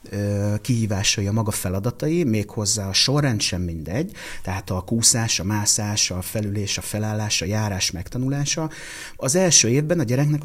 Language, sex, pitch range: Hungarian, male, 95-130 Hz